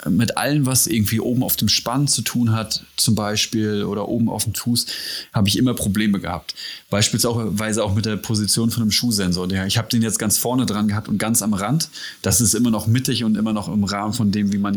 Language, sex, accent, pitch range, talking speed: German, male, German, 100-115 Hz, 230 wpm